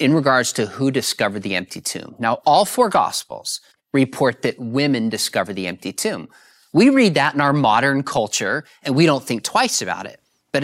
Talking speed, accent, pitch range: 190 wpm, American, 130-190 Hz